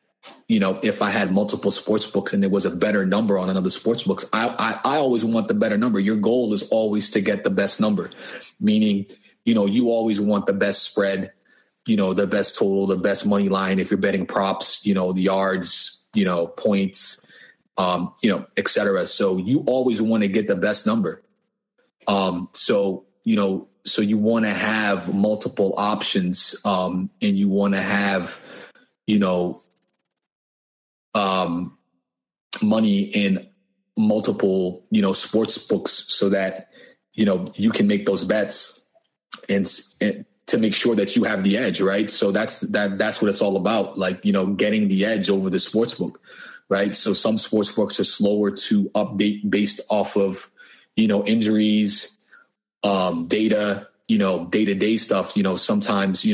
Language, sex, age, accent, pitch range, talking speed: English, male, 30-49, American, 95-110 Hz, 180 wpm